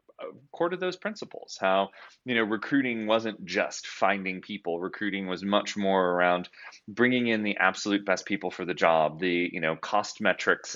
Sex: male